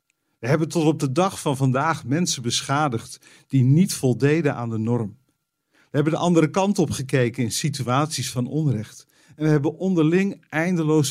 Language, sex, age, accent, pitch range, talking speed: Dutch, male, 50-69, Dutch, 125-155 Hz, 175 wpm